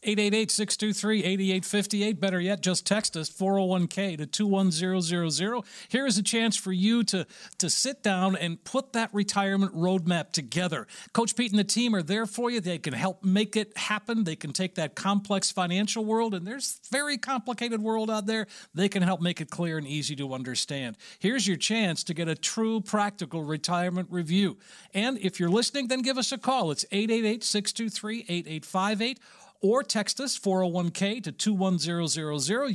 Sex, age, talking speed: male, 50-69, 165 wpm